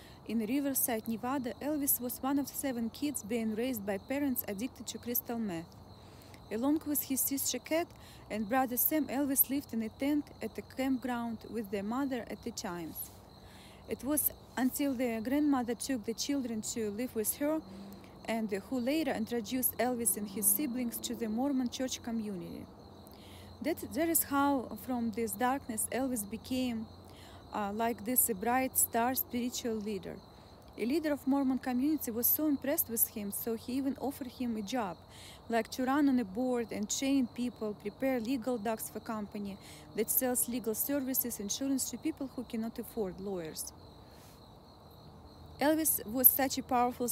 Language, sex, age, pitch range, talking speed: English, female, 20-39, 220-270 Hz, 165 wpm